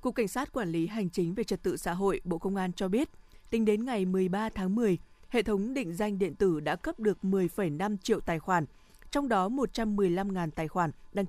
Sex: female